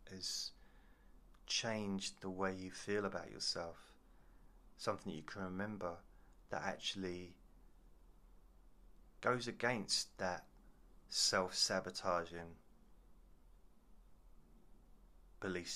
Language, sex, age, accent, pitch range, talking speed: English, male, 30-49, British, 70-95 Hz, 75 wpm